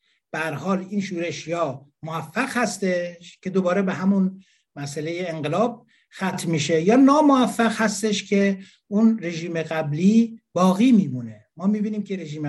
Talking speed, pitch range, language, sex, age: 130 wpm, 155-205 Hz, Persian, male, 60-79